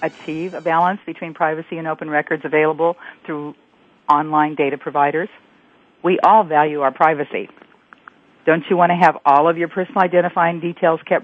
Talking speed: 160 wpm